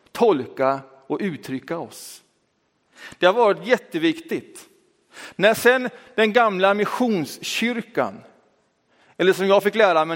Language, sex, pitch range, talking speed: Swedish, male, 180-235 Hz, 110 wpm